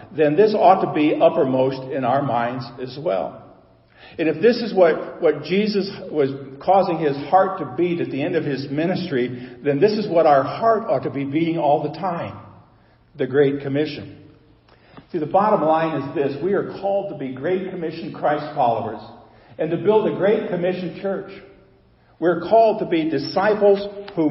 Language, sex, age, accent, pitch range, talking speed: English, male, 50-69, American, 125-165 Hz, 185 wpm